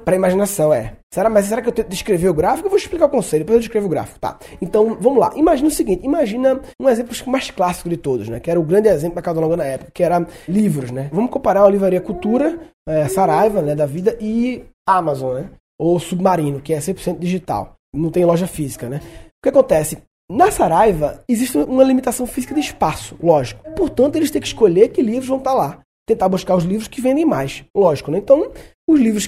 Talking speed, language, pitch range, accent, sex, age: 225 wpm, Portuguese, 175-245 Hz, Brazilian, male, 20-39